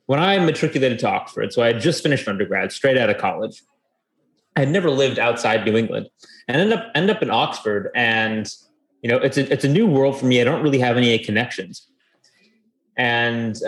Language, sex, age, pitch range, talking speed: English, male, 30-49, 110-150 Hz, 205 wpm